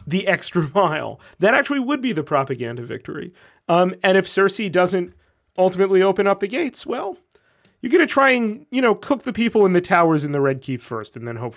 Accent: American